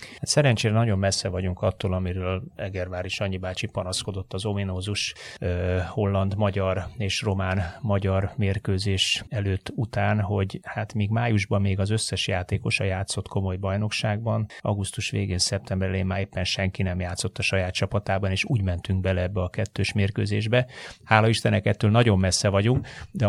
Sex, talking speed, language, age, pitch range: male, 145 wpm, Hungarian, 30-49, 95-110 Hz